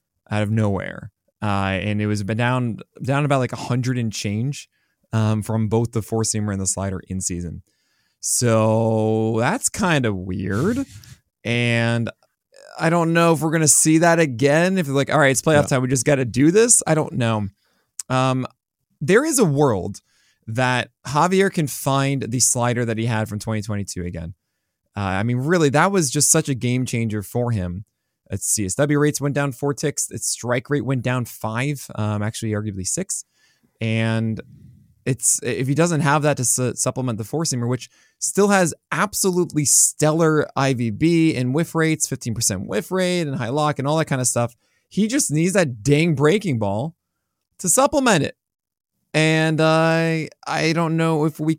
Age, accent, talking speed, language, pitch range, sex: 20-39, American, 180 wpm, English, 110-155 Hz, male